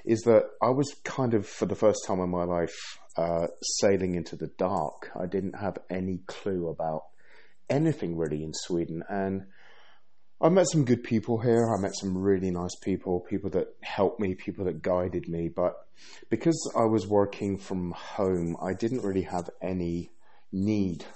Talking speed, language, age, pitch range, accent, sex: 175 wpm, English, 30-49, 85-110 Hz, British, male